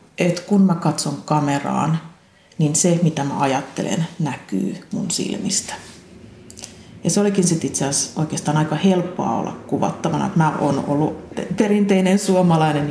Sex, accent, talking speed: female, native, 140 wpm